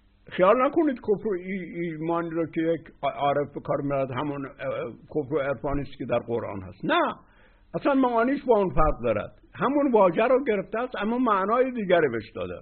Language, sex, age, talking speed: Persian, male, 60-79, 170 wpm